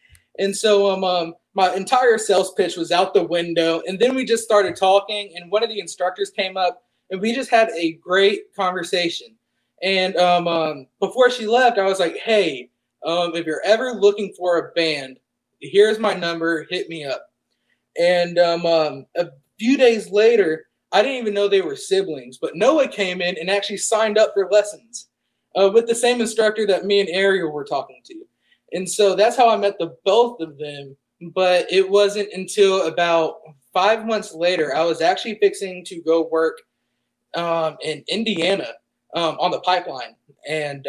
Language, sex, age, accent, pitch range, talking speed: English, male, 20-39, American, 165-210 Hz, 185 wpm